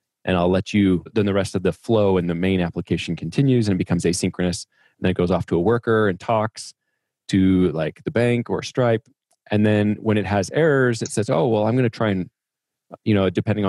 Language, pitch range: English, 95-120 Hz